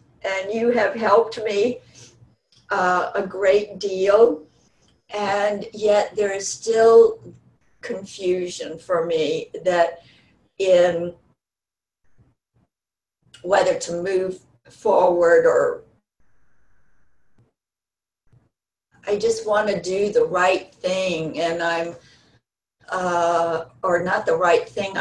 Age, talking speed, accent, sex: 50-69, 95 wpm, American, female